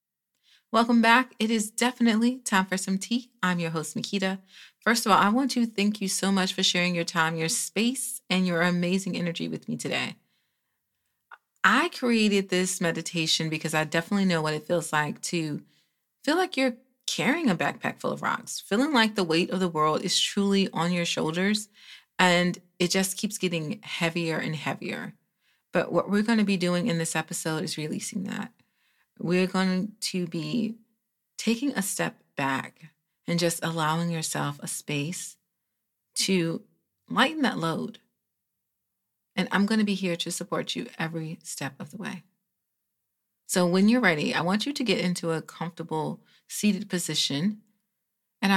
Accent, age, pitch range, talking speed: American, 30-49, 165-215 Hz, 170 wpm